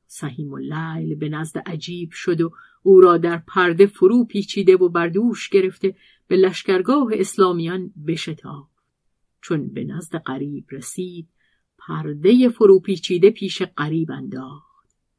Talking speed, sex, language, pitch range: 120 wpm, female, Persian, 155-195 Hz